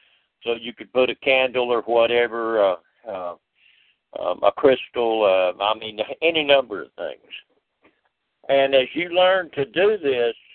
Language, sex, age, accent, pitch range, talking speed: English, male, 60-79, American, 120-145 Hz, 155 wpm